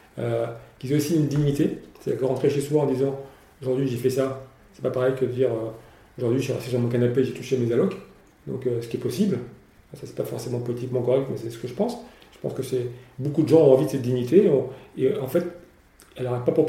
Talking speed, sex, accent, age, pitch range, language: 265 wpm, male, French, 40-59, 125-150 Hz, French